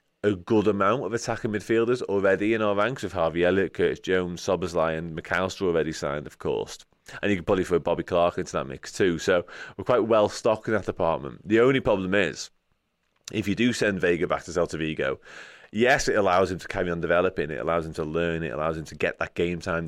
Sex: male